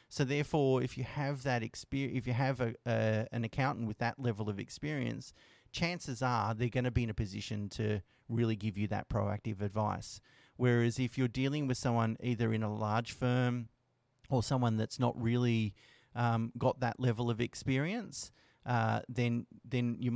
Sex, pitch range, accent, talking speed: male, 110-125 Hz, Australian, 180 wpm